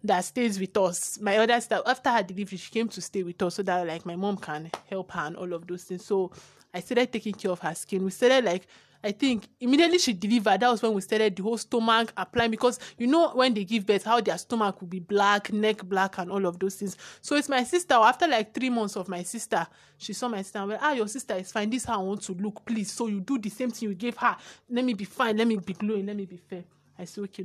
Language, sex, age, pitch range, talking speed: English, male, 20-39, 190-235 Hz, 280 wpm